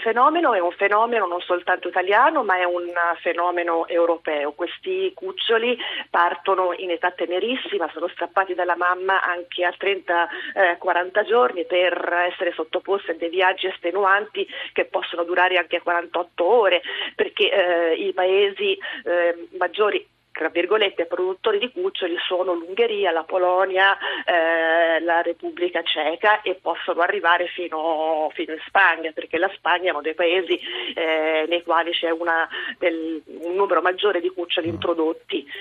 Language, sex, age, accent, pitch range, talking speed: Italian, female, 40-59, native, 170-215 Hz, 145 wpm